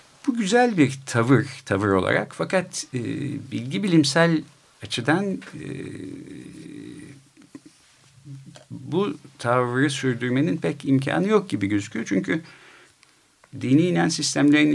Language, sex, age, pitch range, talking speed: Turkish, male, 50-69, 125-145 Hz, 100 wpm